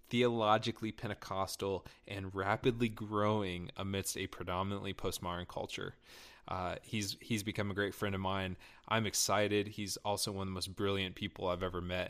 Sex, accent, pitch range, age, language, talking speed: male, American, 95-110 Hz, 20-39, English, 160 wpm